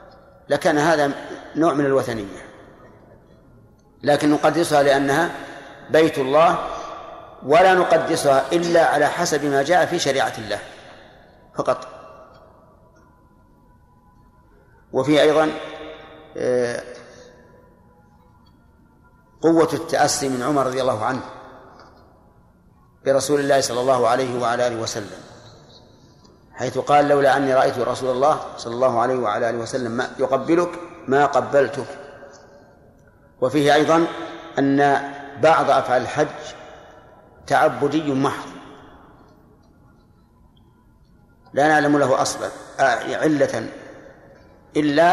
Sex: male